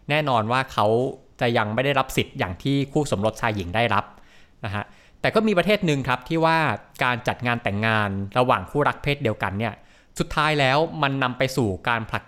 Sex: male